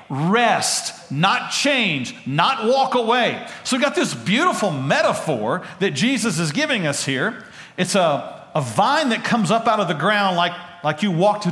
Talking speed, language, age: 175 wpm, English, 50-69